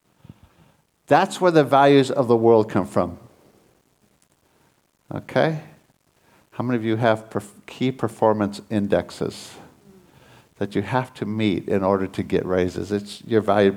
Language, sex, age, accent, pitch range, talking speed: English, male, 60-79, American, 110-135 Hz, 135 wpm